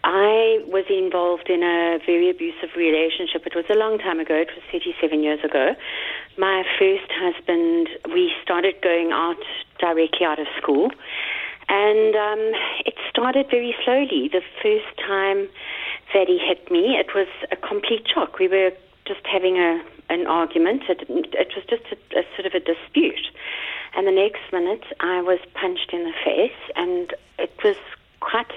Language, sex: English, female